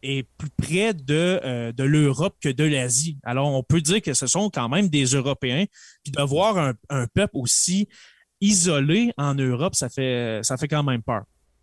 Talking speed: 185 wpm